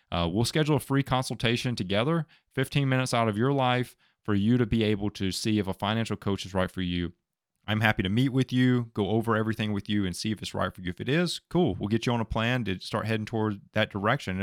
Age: 30-49